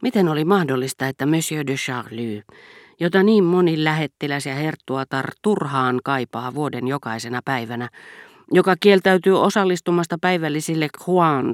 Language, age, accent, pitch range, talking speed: Finnish, 40-59, native, 130-170 Hz, 120 wpm